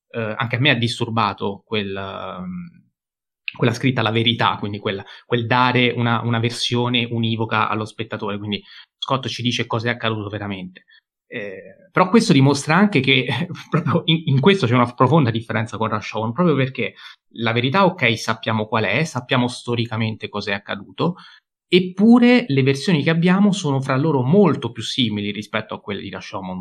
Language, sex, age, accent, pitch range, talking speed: Italian, male, 30-49, native, 110-160 Hz, 170 wpm